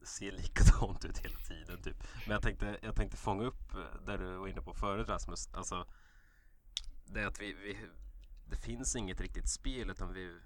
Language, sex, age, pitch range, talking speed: Swedish, male, 30-49, 85-105 Hz, 190 wpm